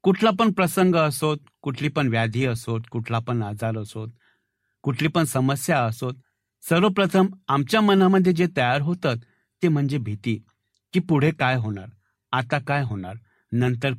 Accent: native